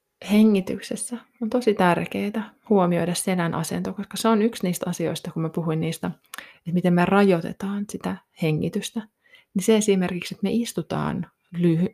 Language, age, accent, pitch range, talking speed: Finnish, 20-39, native, 170-230 Hz, 150 wpm